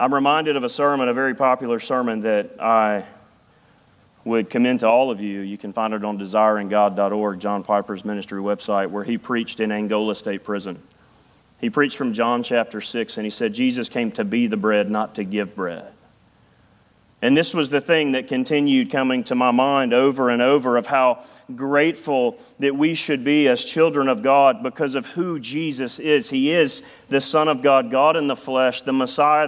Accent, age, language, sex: American, 40-59, English, male